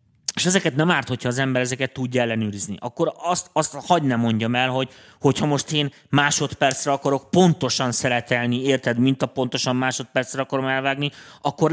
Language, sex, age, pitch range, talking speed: Hungarian, male, 30-49, 120-150 Hz, 165 wpm